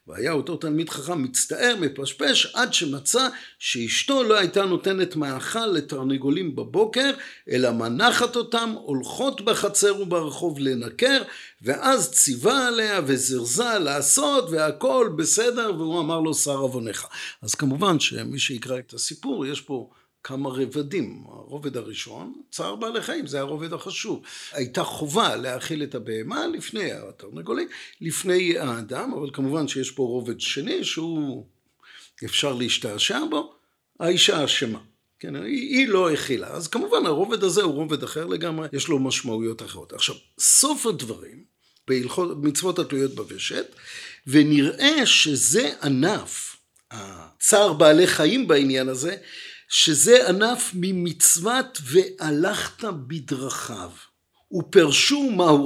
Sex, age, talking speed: male, 50-69, 120 wpm